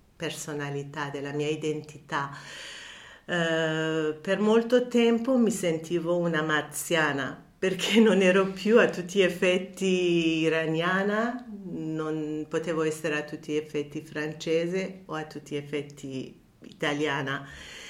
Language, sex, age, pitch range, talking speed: Italian, female, 50-69, 155-190 Hz, 115 wpm